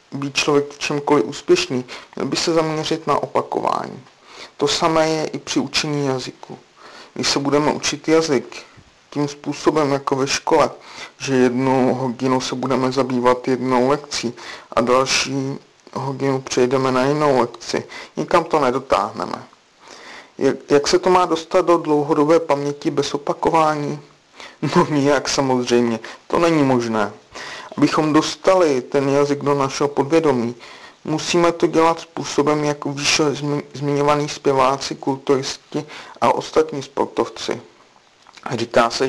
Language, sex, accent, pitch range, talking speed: Czech, male, native, 130-150 Hz, 130 wpm